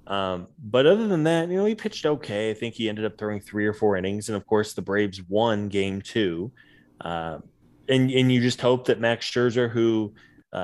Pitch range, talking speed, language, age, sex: 95-115 Hz, 225 wpm, English, 20-39, male